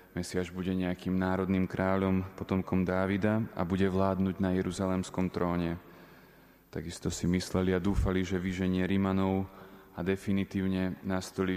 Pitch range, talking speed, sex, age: 90-95 Hz, 125 wpm, male, 30-49